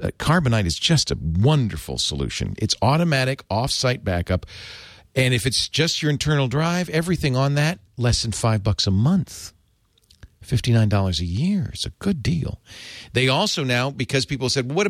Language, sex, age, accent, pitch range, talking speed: English, male, 50-69, American, 100-135 Hz, 170 wpm